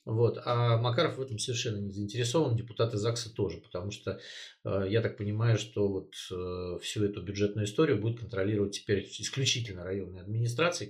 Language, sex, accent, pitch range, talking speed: Russian, male, native, 100-120 Hz, 155 wpm